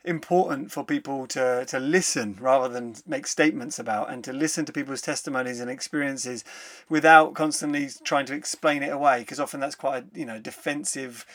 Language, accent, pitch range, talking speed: English, British, 135-165 Hz, 175 wpm